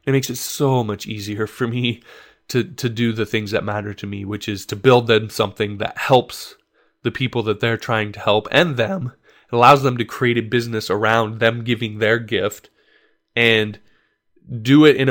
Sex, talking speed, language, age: male, 200 wpm, English, 20-39